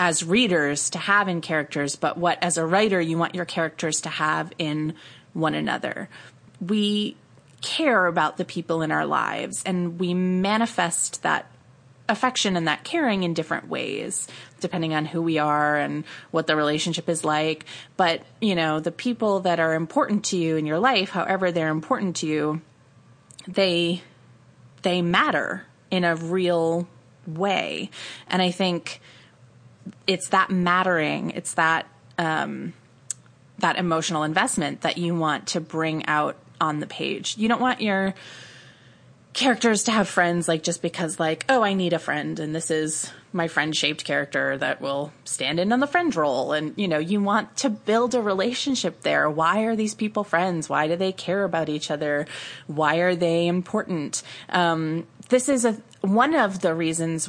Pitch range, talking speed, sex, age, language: 155-195 Hz, 170 wpm, female, 30-49, English